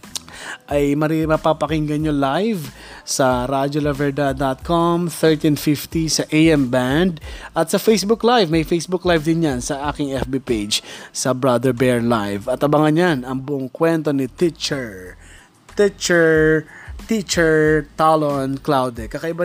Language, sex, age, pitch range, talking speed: Filipino, male, 20-39, 135-190 Hz, 120 wpm